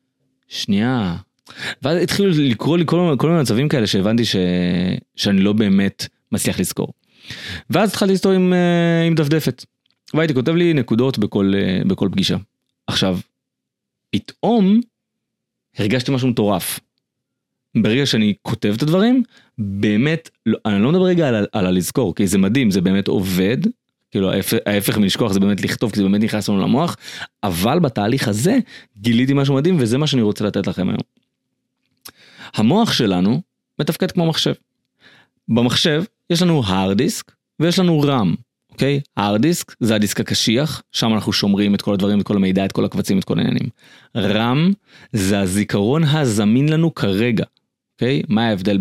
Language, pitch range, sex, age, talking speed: Hebrew, 105-165 Hz, male, 30-49, 150 wpm